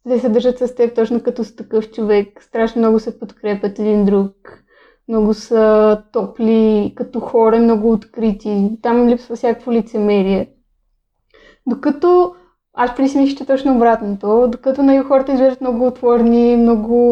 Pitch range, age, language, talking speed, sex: 210-245 Hz, 20-39, Bulgarian, 145 wpm, female